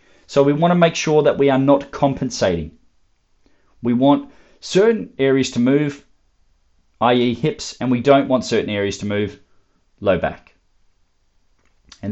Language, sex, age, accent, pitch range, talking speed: English, male, 40-59, Australian, 105-145 Hz, 145 wpm